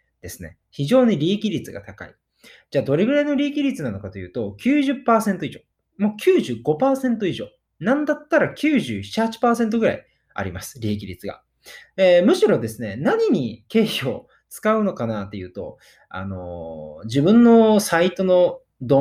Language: Japanese